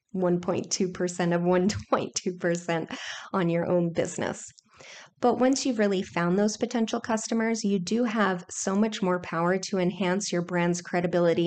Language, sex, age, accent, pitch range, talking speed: English, female, 30-49, American, 175-205 Hz, 135 wpm